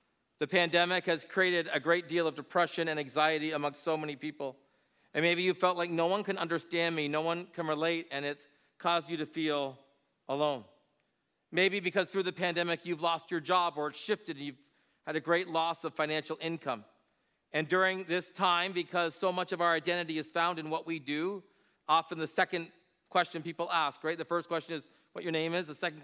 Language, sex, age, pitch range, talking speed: English, male, 40-59, 145-175 Hz, 205 wpm